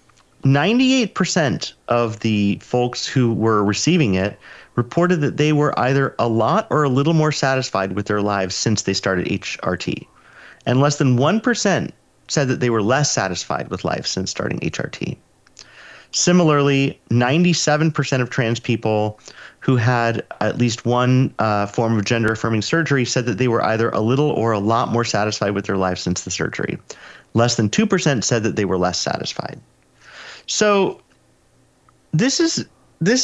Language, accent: English, American